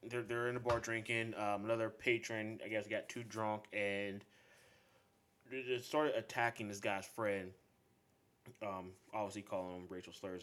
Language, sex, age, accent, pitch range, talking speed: English, male, 20-39, American, 100-115 Hz, 150 wpm